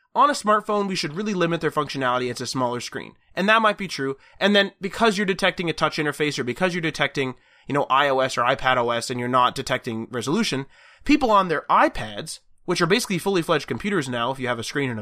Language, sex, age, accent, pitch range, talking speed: English, male, 20-39, American, 135-205 Hz, 230 wpm